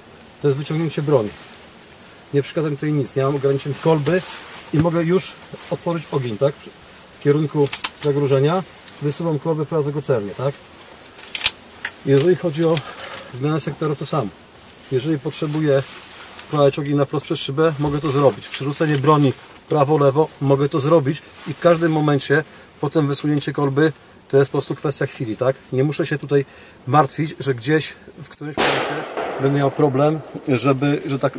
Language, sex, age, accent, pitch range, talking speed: Polish, male, 40-59, native, 140-155 Hz, 155 wpm